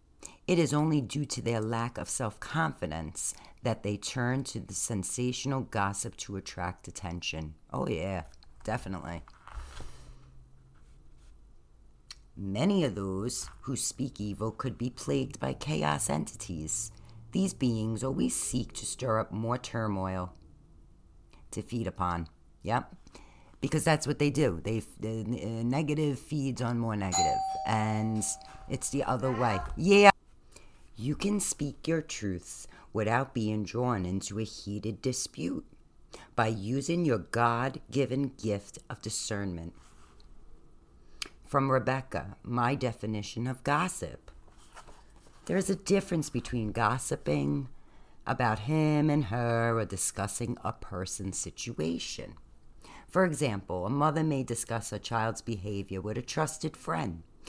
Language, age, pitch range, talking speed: English, 40-59, 95-135 Hz, 125 wpm